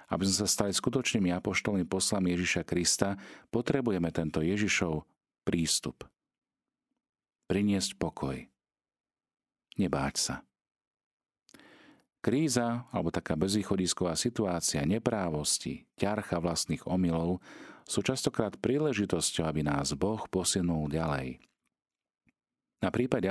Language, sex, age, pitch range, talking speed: Slovak, male, 40-59, 80-95 Hz, 95 wpm